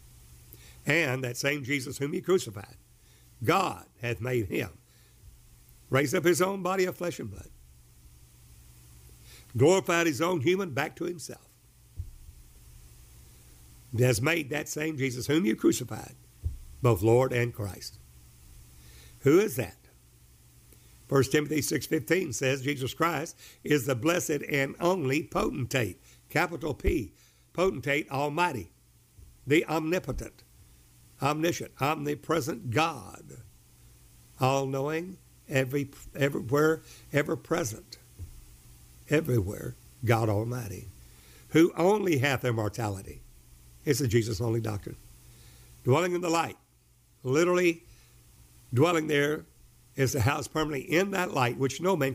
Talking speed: 110 wpm